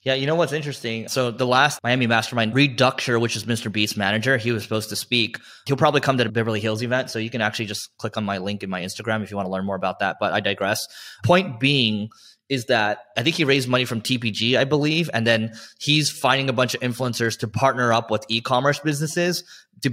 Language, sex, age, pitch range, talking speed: English, male, 20-39, 110-130 Hz, 240 wpm